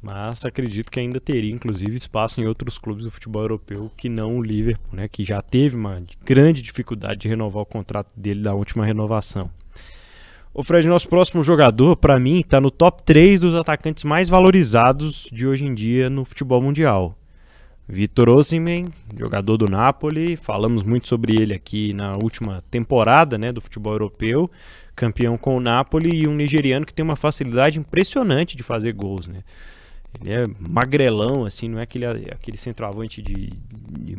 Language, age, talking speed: Portuguese, 20-39, 170 wpm